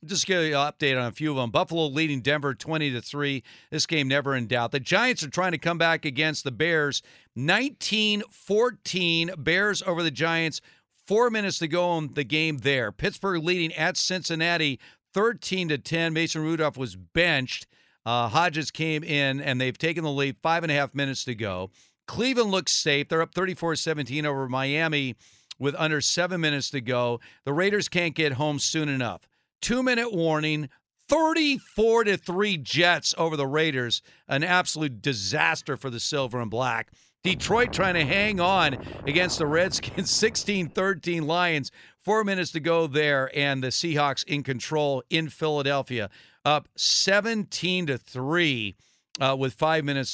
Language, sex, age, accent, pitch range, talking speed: English, male, 50-69, American, 140-175 Hz, 155 wpm